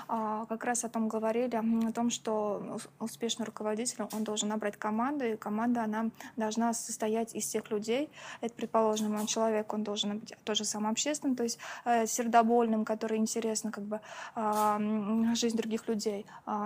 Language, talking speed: Russian, 150 wpm